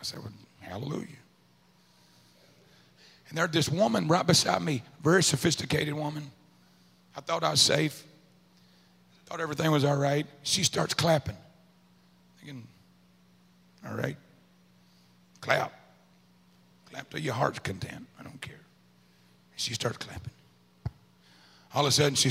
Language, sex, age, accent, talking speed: English, male, 50-69, American, 130 wpm